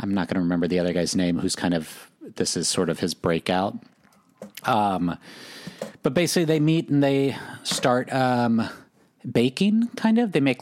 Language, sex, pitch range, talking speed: English, male, 95-125 Hz, 180 wpm